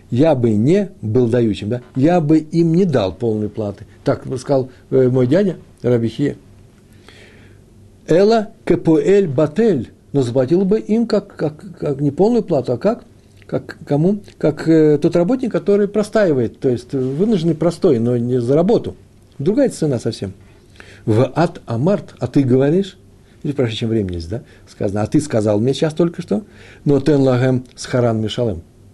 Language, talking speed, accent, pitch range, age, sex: Russian, 155 wpm, native, 105-165 Hz, 60-79, male